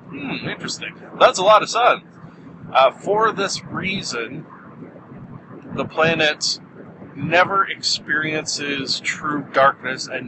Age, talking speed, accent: 40-59, 105 wpm, American